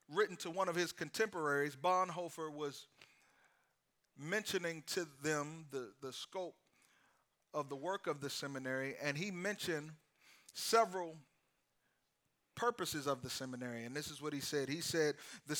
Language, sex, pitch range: English, male, 145-185 Hz